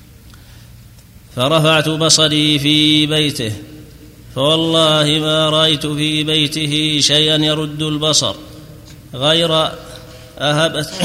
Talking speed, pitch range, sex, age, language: 75 wpm, 150-155 Hz, male, 30-49, Arabic